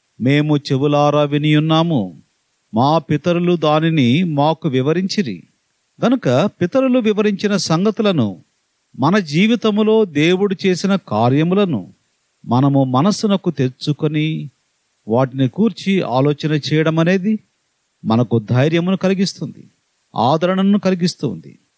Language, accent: Telugu, native